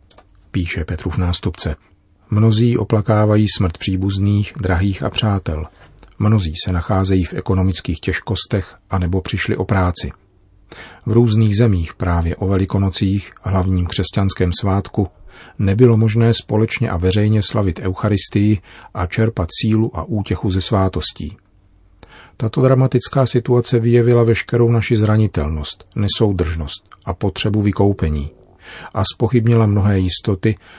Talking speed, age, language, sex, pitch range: 115 wpm, 40-59, Czech, male, 95-110 Hz